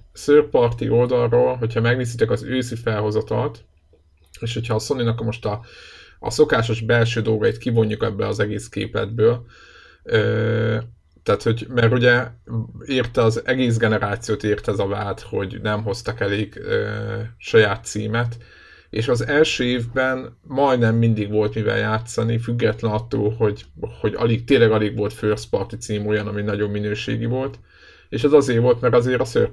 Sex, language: male, Hungarian